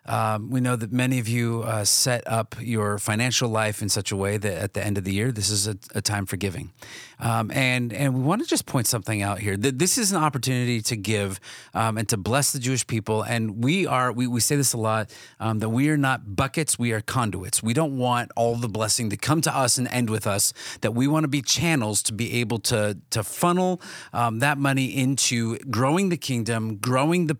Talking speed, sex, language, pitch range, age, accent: 240 wpm, male, English, 110-135 Hz, 30-49, American